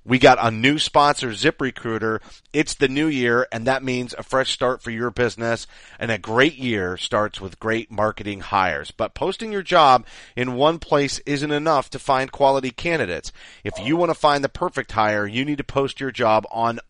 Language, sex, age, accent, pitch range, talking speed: English, male, 40-59, American, 110-140 Hz, 200 wpm